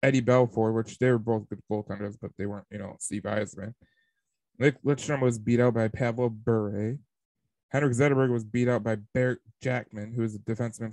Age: 20-39